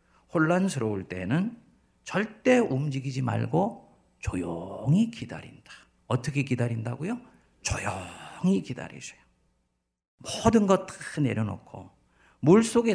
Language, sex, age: Korean, male, 50-69